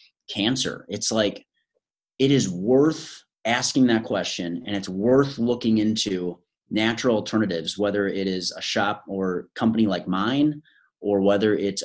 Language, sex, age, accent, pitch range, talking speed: English, male, 30-49, American, 105-130 Hz, 140 wpm